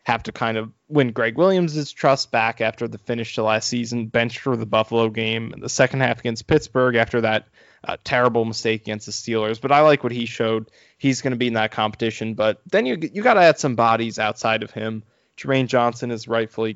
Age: 20-39